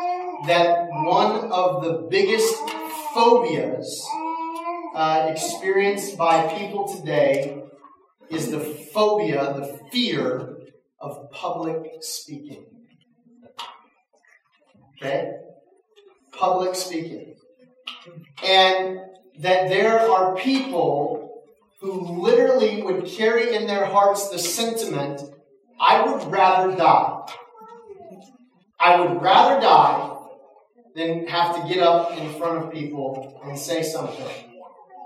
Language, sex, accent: English, male, American